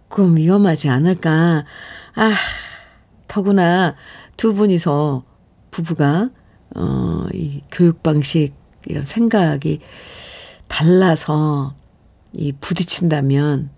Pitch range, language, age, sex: 150-210 Hz, Korean, 50-69, female